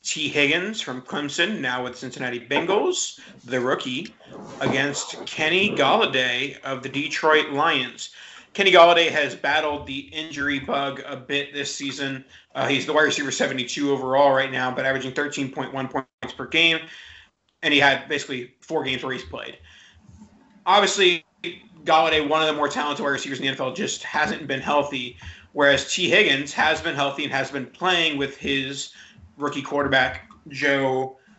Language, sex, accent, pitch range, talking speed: English, male, American, 135-155 Hz, 160 wpm